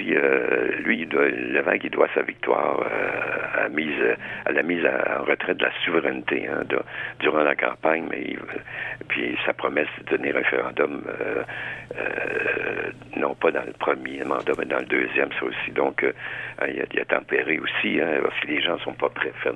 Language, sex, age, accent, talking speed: French, male, 60-79, French, 200 wpm